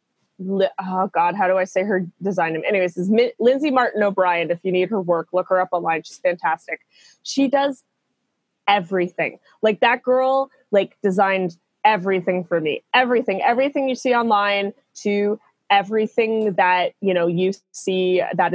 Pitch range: 180-220 Hz